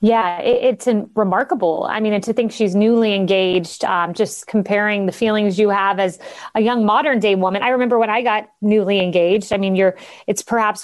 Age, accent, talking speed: 30-49, American, 210 wpm